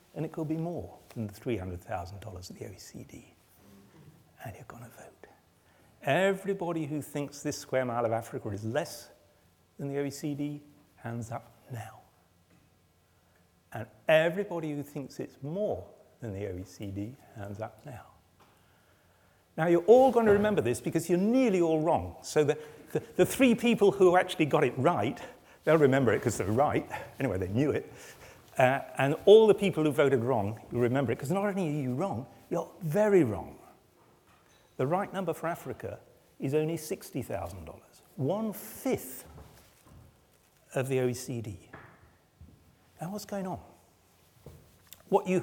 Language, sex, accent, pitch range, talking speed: English, male, British, 105-170 Hz, 150 wpm